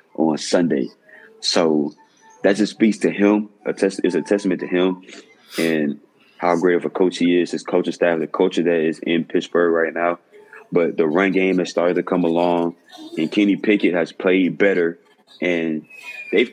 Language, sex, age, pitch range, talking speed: English, male, 20-39, 85-105 Hz, 180 wpm